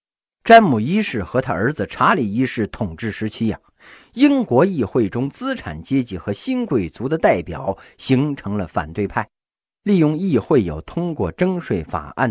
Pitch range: 100-165 Hz